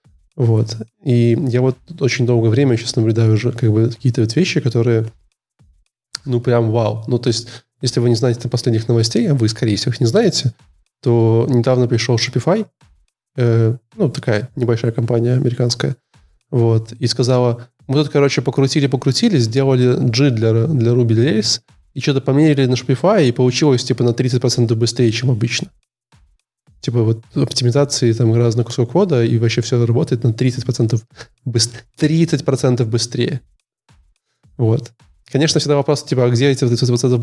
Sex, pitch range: male, 115-130 Hz